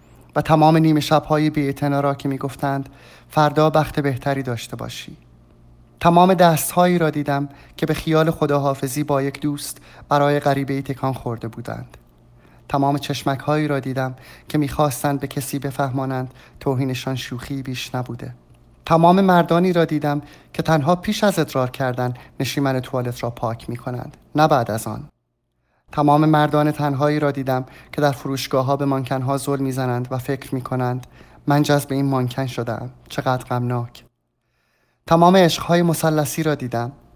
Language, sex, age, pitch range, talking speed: Persian, male, 30-49, 125-150 Hz, 150 wpm